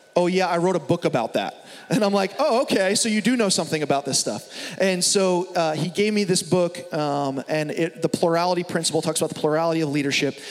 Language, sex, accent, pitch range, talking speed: English, male, American, 160-190 Hz, 230 wpm